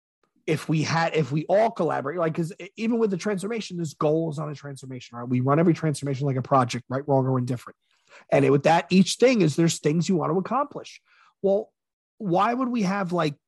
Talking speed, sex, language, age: 225 wpm, male, English, 30-49